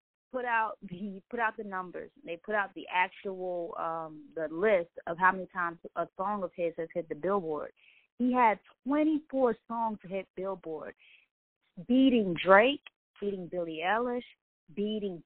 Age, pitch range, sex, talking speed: 20-39, 170-215 Hz, female, 155 wpm